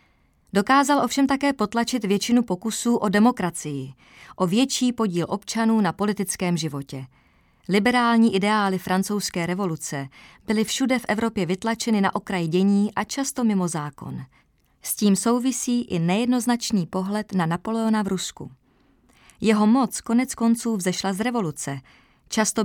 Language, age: Czech, 30-49